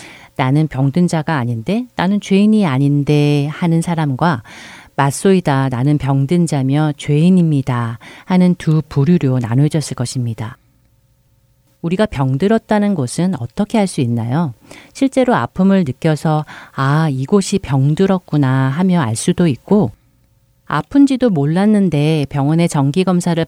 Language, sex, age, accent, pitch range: Korean, female, 40-59, native, 135-185 Hz